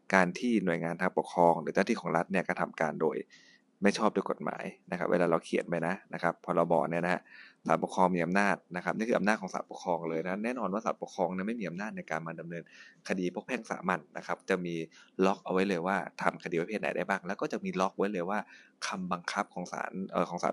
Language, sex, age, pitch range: Thai, male, 20-39, 85-100 Hz